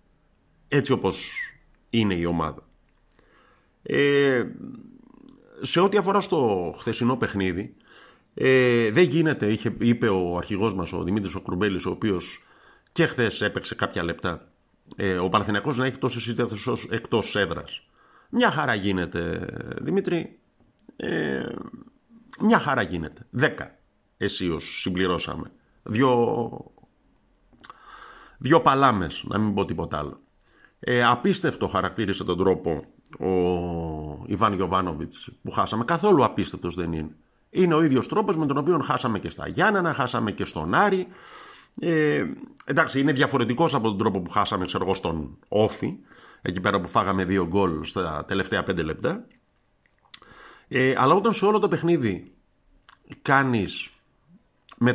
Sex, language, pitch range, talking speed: male, Greek, 95-155 Hz, 130 wpm